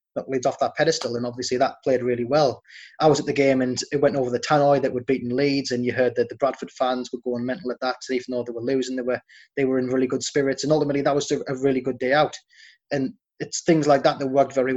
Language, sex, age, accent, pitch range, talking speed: English, male, 20-39, British, 125-140 Hz, 270 wpm